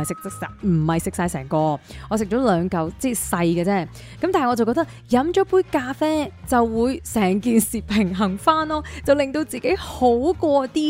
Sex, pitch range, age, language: female, 180-270 Hz, 20-39, Chinese